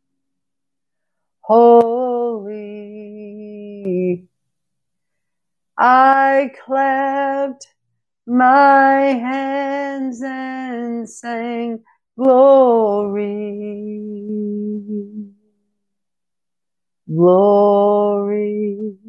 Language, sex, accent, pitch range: English, female, American, 205-260 Hz